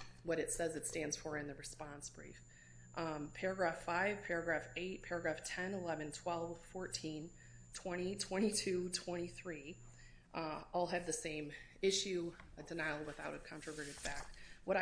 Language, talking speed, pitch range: English, 145 wpm, 155-185 Hz